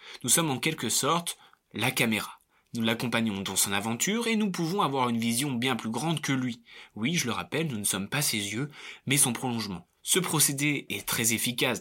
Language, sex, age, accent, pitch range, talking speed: French, male, 20-39, French, 115-165 Hz, 210 wpm